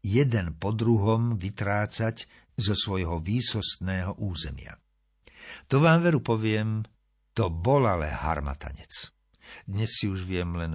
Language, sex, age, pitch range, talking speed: Slovak, male, 50-69, 85-120 Hz, 115 wpm